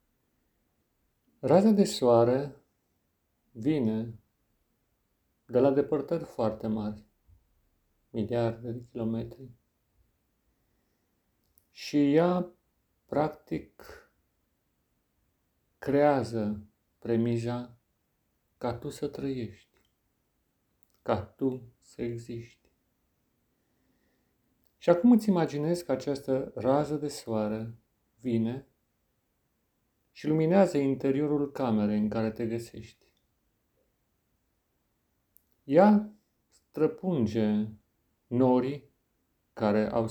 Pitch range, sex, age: 110-145 Hz, male, 50-69